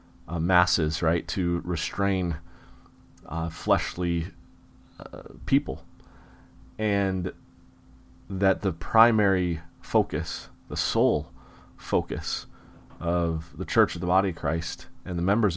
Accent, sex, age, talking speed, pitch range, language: American, male, 30-49, 110 wpm, 80-95 Hz, English